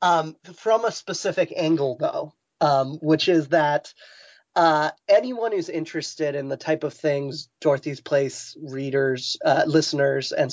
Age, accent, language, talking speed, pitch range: 30-49, American, English, 140 wpm, 140-165 Hz